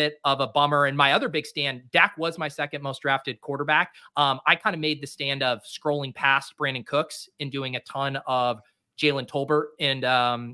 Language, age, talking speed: English, 30-49, 205 wpm